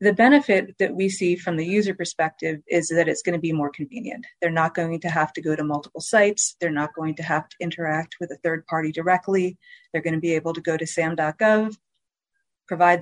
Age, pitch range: 30-49, 155-175 Hz